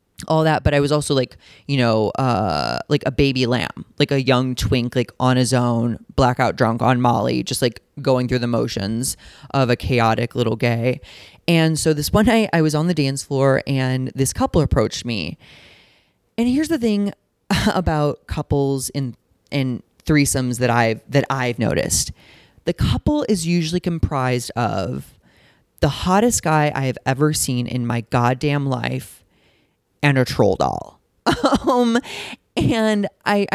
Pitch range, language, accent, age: 125-175 Hz, English, American, 20-39